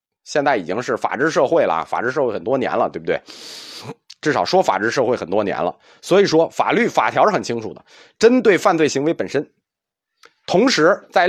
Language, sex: Chinese, male